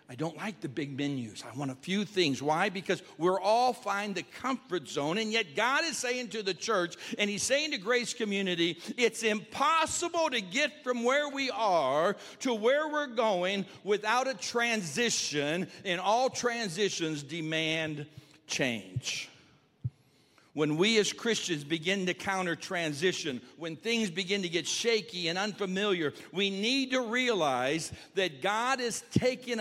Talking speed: 155 wpm